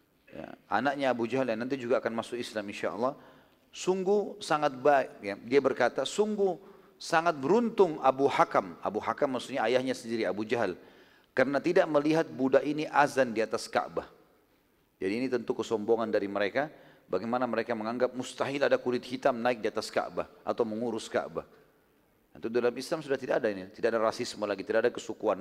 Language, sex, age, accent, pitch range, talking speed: Indonesian, male, 40-59, native, 115-145 Hz, 170 wpm